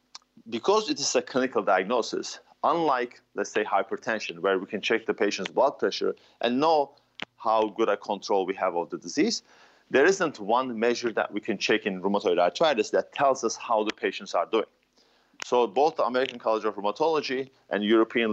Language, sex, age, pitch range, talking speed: English, male, 40-59, 110-155 Hz, 185 wpm